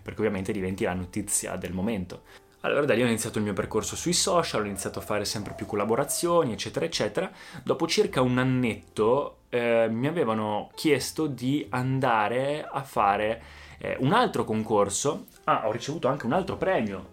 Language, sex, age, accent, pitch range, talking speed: Italian, male, 20-39, native, 105-135 Hz, 170 wpm